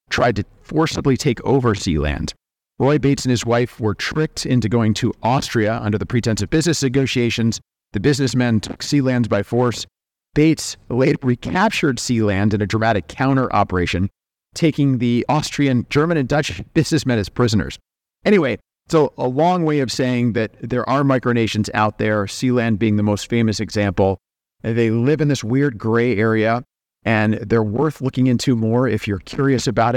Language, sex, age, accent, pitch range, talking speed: English, male, 40-59, American, 105-135 Hz, 165 wpm